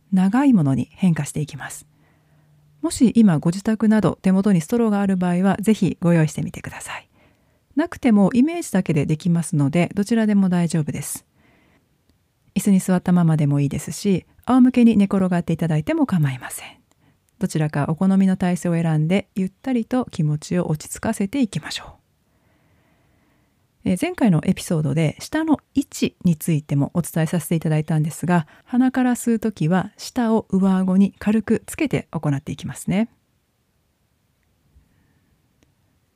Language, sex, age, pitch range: Japanese, female, 40-59, 160-220 Hz